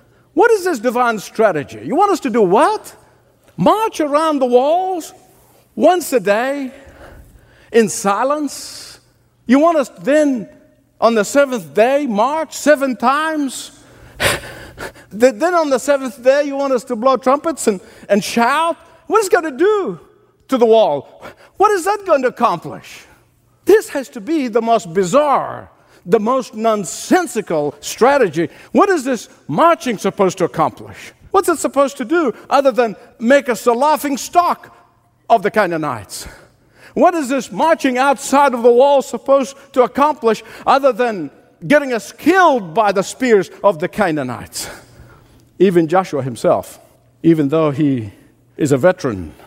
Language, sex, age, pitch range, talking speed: English, male, 50-69, 190-295 Hz, 150 wpm